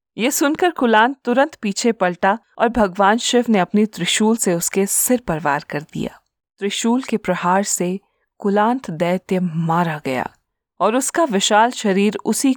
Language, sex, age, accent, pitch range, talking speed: Hindi, female, 40-59, native, 175-230 Hz, 150 wpm